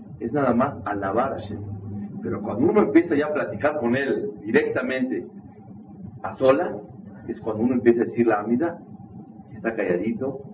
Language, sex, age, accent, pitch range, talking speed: Spanish, male, 50-69, Mexican, 105-165 Hz, 160 wpm